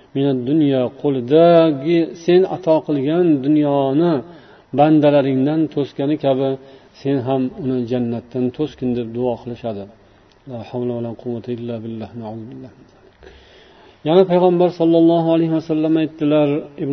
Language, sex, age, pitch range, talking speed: Russian, male, 50-69, 130-155 Hz, 105 wpm